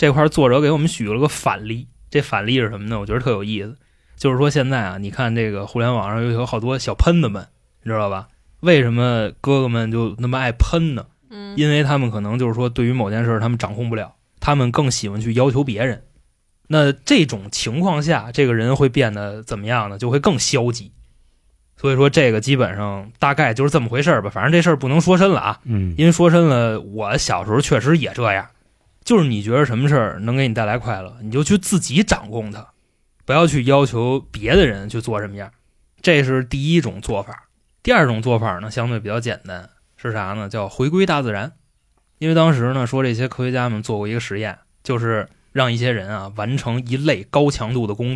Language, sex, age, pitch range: Chinese, male, 20-39, 110-145 Hz